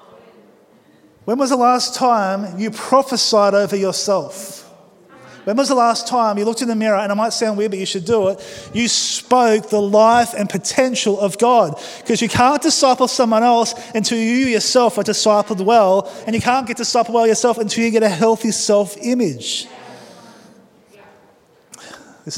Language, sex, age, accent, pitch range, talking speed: English, male, 20-39, Australian, 185-225 Hz, 170 wpm